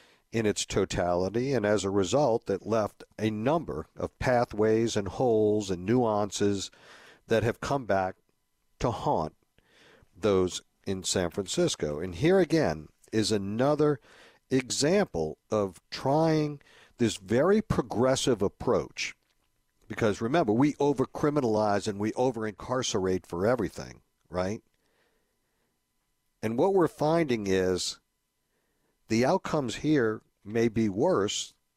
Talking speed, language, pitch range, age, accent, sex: 115 wpm, English, 100-130 Hz, 50-69, American, male